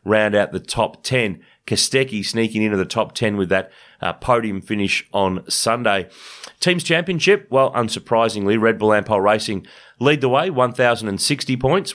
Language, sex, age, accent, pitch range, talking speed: English, male, 30-49, Australian, 105-130 Hz, 155 wpm